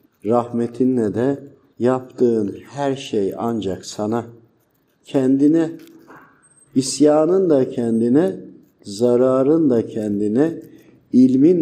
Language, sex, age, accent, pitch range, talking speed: Turkish, male, 50-69, native, 110-150 Hz, 75 wpm